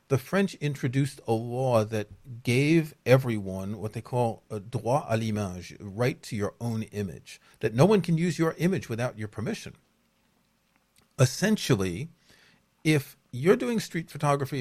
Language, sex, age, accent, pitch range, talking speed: English, male, 40-59, American, 110-155 Hz, 150 wpm